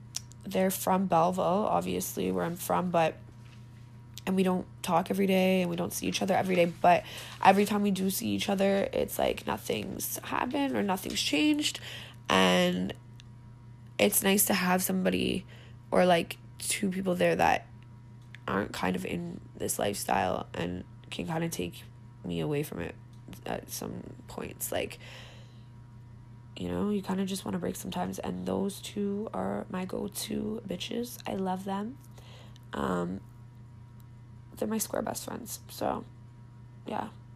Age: 20-39